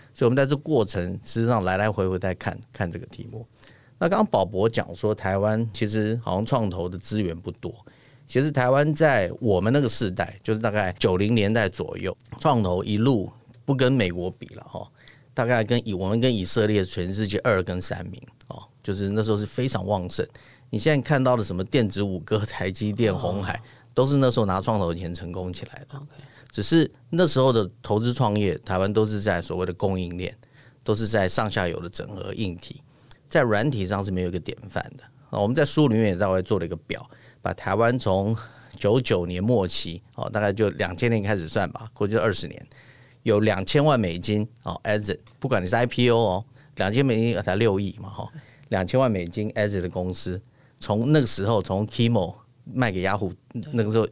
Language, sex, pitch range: Chinese, male, 95-125 Hz